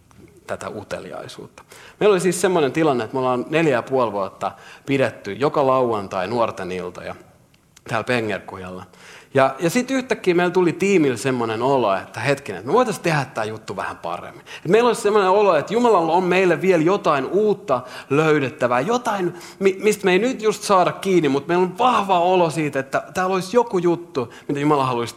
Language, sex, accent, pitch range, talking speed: Finnish, male, native, 115-185 Hz, 180 wpm